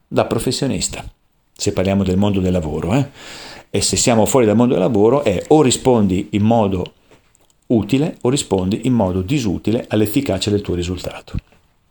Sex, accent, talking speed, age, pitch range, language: male, native, 160 wpm, 50-69, 105-145 Hz, Italian